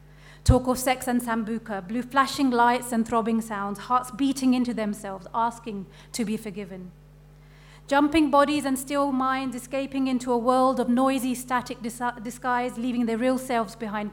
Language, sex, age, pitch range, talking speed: English, female, 40-59, 200-250 Hz, 155 wpm